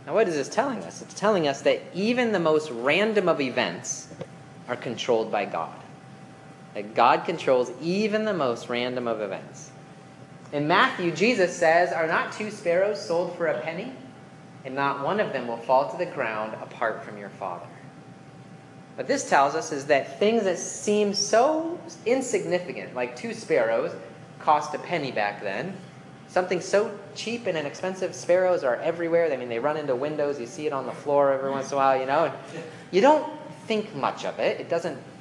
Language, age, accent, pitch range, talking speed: English, 30-49, American, 130-180 Hz, 185 wpm